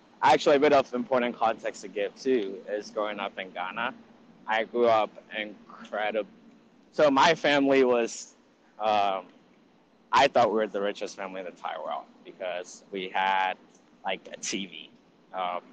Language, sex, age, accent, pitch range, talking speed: English, male, 20-39, American, 105-130 Hz, 155 wpm